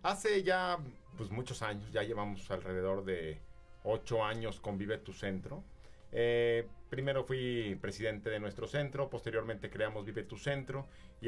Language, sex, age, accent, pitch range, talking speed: Spanish, male, 40-59, Mexican, 110-145 Hz, 150 wpm